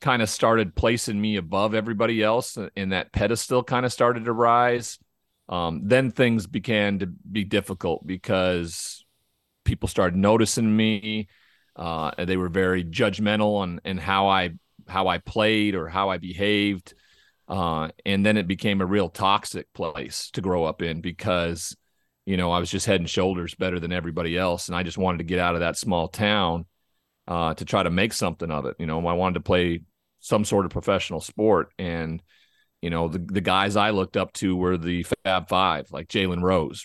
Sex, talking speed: male, 190 wpm